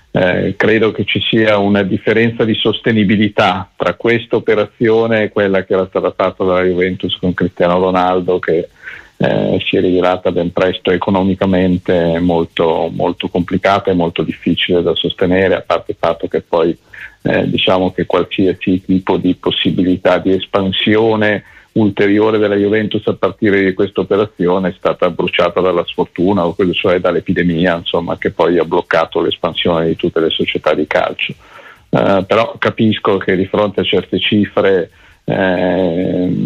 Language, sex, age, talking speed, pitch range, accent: Italian, male, 50-69, 150 wpm, 90-105 Hz, native